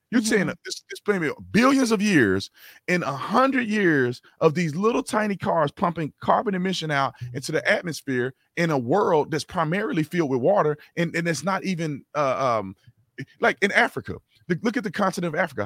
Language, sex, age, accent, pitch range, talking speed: English, male, 30-49, American, 125-190 Hz, 190 wpm